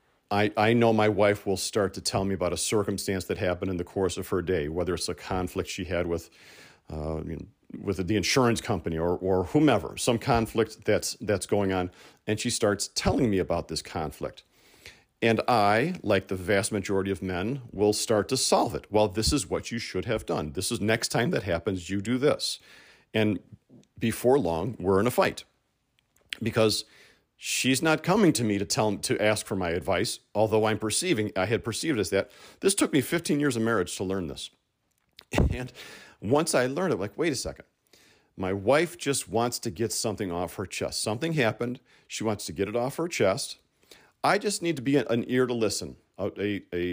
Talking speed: 205 wpm